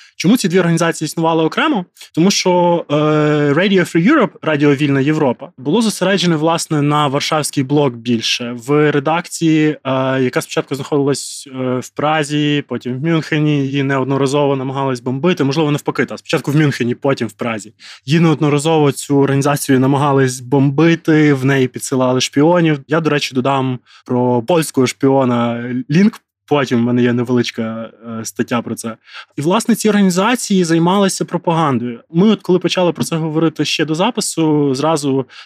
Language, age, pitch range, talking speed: Ukrainian, 20-39, 135-170 Hz, 150 wpm